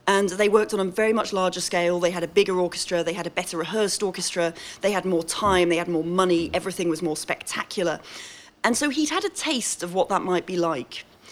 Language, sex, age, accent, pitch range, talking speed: English, female, 40-59, British, 175-210 Hz, 235 wpm